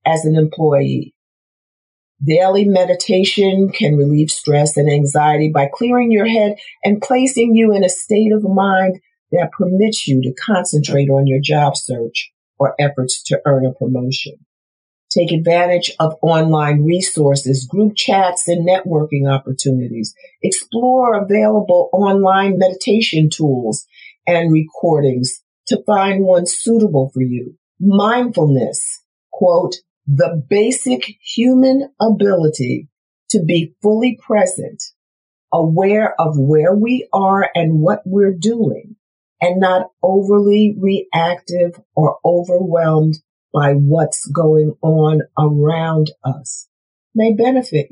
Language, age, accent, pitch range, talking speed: English, 50-69, American, 155-210 Hz, 115 wpm